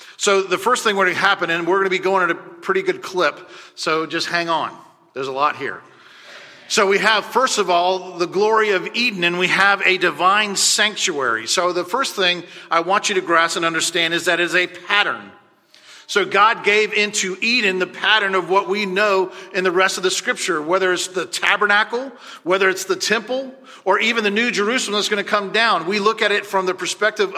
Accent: American